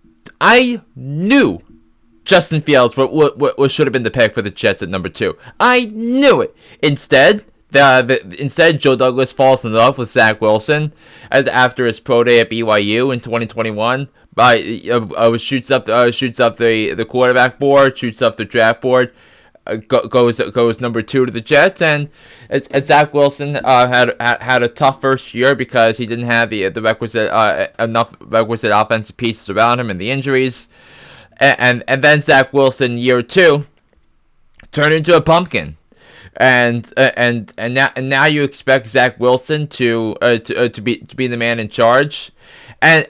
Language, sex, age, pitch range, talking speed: English, male, 20-39, 115-140 Hz, 180 wpm